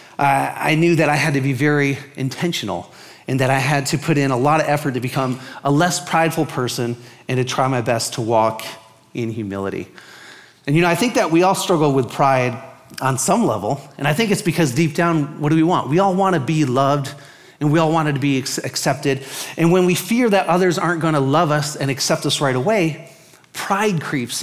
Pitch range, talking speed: 135-175 Hz, 225 wpm